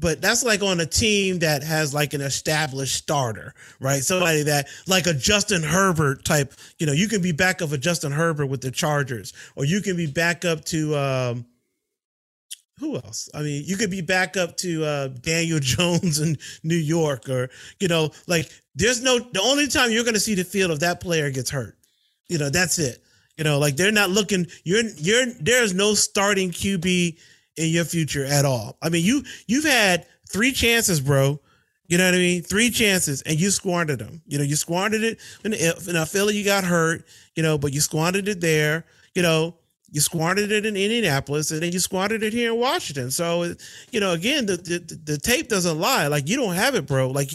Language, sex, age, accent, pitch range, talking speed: English, male, 30-49, American, 150-195 Hz, 210 wpm